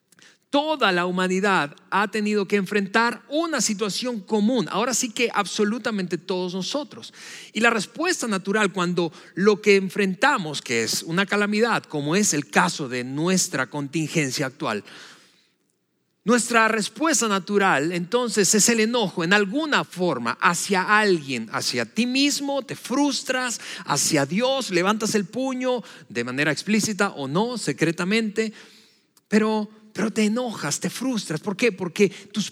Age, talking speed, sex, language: 40-59, 135 wpm, male, Spanish